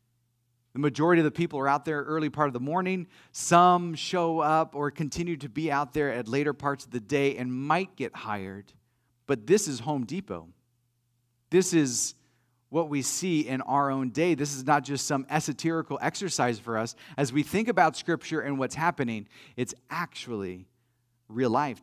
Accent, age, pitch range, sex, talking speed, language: American, 40-59, 130-165 Hz, male, 185 wpm, English